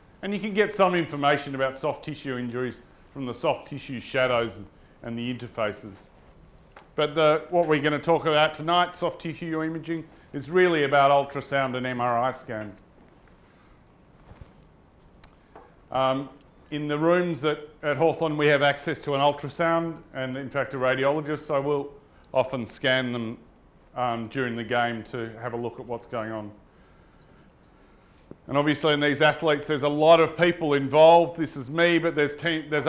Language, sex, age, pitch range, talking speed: English, male, 40-59, 130-160 Hz, 165 wpm